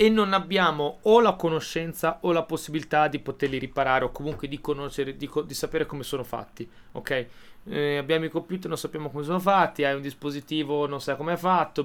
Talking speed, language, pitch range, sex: 210 wpm, Italian, 130-160 Hz, male